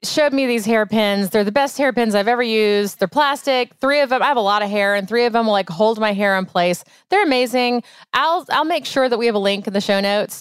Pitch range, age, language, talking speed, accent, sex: 190-250 Hz, 30-49, English, 275 wpm, American, female